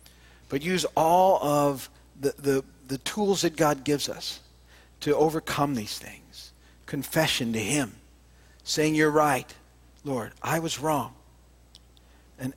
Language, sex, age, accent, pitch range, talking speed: English, male, 50-69, American, 105-160 Hz, 125 wpm